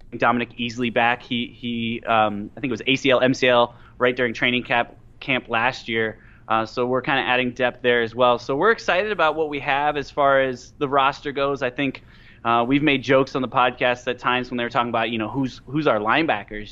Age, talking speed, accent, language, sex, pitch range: 20-39, 230 wpm, American, English, male, 120-140 Hz